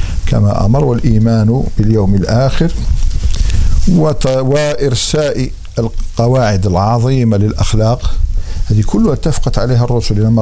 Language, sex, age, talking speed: Arabic, male, 50-69, 85 wpm